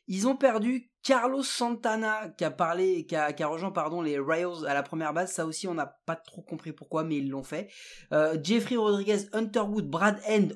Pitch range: 155-210 Hz